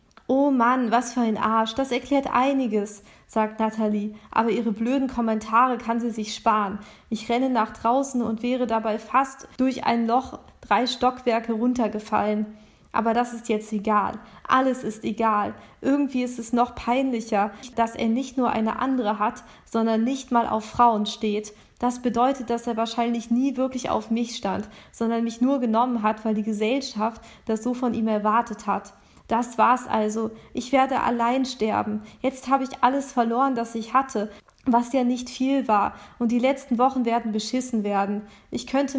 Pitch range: 220-255 Hz